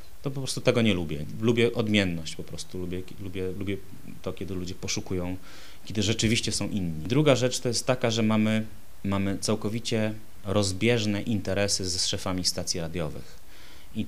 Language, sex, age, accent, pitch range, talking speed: Polish, male, 30-49, native, 90-110 Hz, 155 wpm